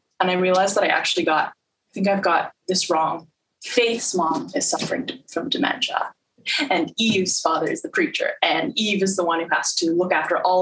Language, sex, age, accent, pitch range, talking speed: English, female, 20-39, American, 180-240 Hz, 205 wpm